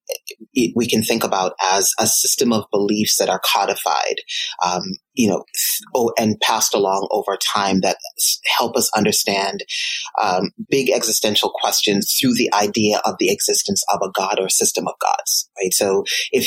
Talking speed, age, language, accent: 170 wpm, 30-49, English, American